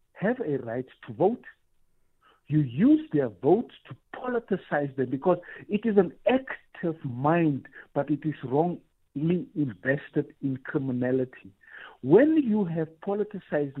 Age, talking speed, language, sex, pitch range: 60-79, 125 wpm, English, male, 135-180 Hz